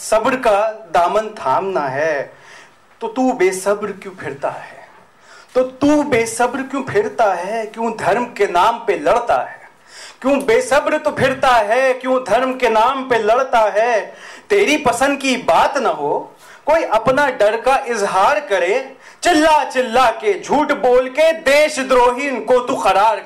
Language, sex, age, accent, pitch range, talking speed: Hindi, male, 40-59, native, 230-300 Hz, 150 wpm